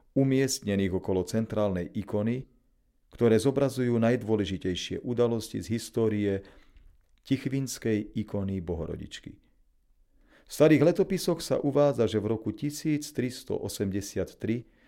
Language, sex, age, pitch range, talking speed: Slovak, male, 40-59, 100-125 Hz, 90 wpm